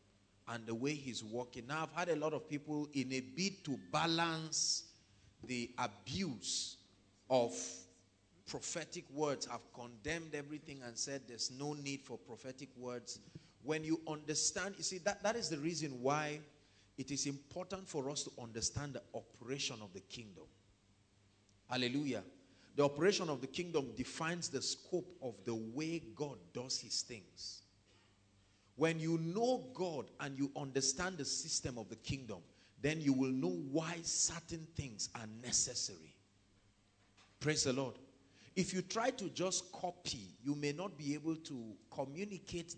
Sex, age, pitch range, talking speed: male, 40-59, 105-155 Hz, 155 wpm